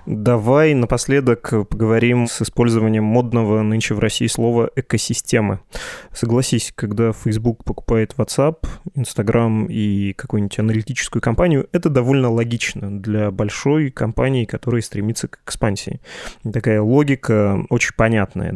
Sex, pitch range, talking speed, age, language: male, 105-125 Hz, 115 wpm, 20-39, Russian